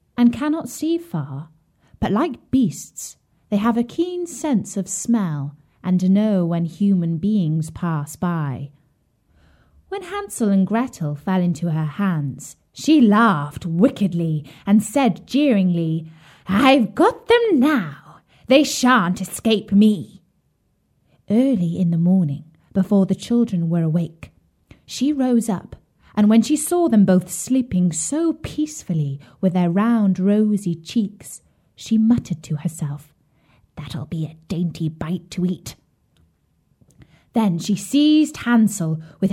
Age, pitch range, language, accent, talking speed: 20-39, 165-235 Hz, English, British, 130 wpm